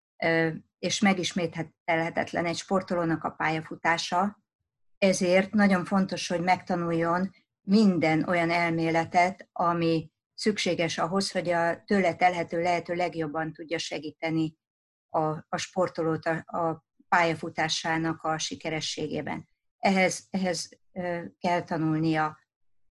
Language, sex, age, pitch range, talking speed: Hungarian, female, 50-69, 160-175 Hz, 90 wpm